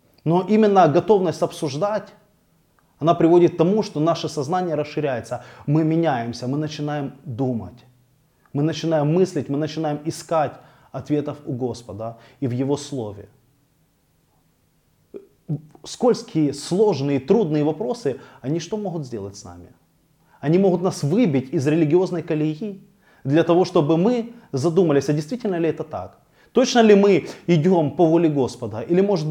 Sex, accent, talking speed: male, native, 135 wpm